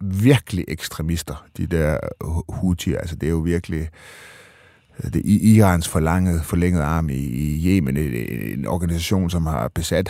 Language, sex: Danish, male